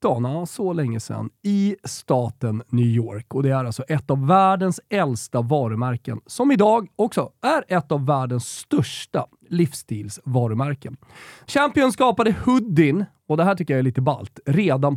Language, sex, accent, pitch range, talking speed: Swedish, male, native, 130-200 Hz, 150 wpm